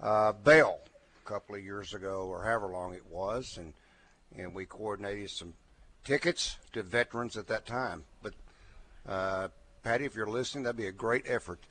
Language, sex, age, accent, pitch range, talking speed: English, male, 60-79, American, 95-130 Hz, 185 wpm